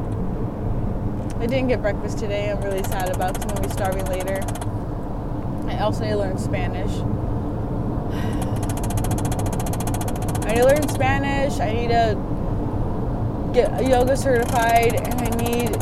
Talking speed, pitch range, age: 135 wpm, 100-115 Hz, 20-39